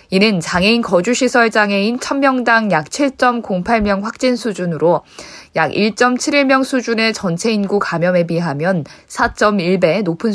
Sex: female